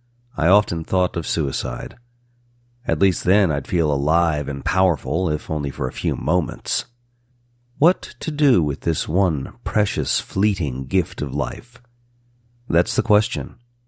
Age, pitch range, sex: 50-69, 85-120 Hz, male